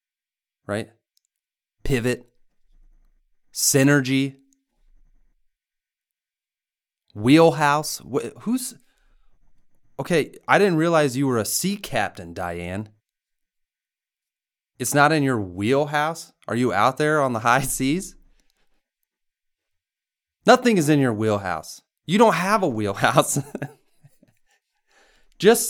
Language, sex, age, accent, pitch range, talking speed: English, male, 30-49, American, 100-135 Hz, 90 wpm